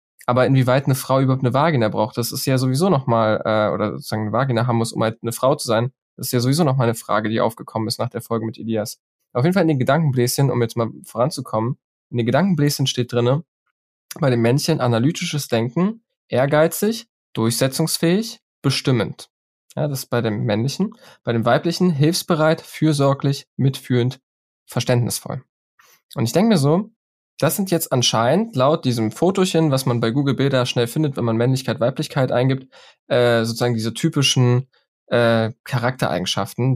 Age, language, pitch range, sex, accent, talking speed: 10-29, German, 115-140 Hz, male, German, 175 wpm